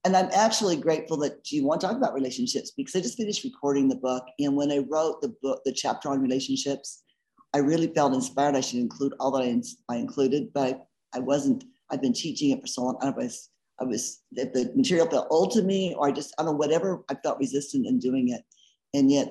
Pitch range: 130-170 Hz